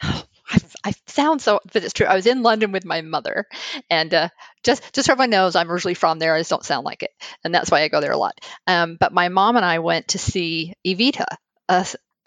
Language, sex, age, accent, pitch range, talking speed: English, female, 50-69, American, 170-245 Hz, 260 wpm